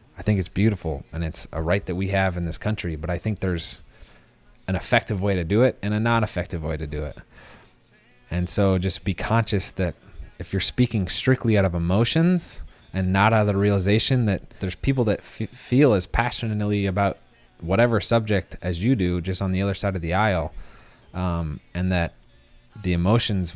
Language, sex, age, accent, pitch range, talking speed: English, male, 20-39, American, 85-110 Hz, 195 wpm